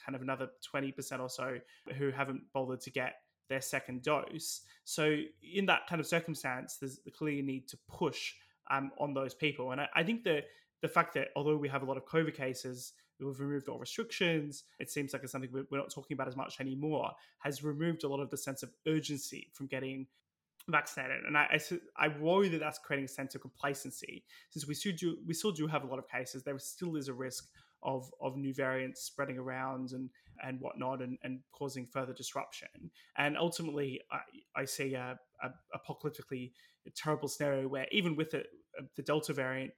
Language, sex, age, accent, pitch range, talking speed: English, male, 20-39, Australian, 130-150 Hz, 205 wpm